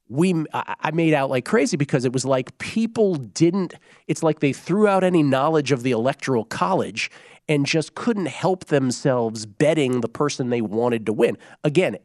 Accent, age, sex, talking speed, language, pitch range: American, 40-59, male, 185 wpm, English, 120-160 Hz